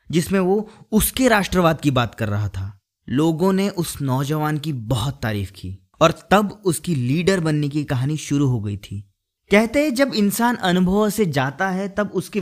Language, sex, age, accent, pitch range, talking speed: Hindi, male, 20-39, native, 140-190 Hz, 185 wpm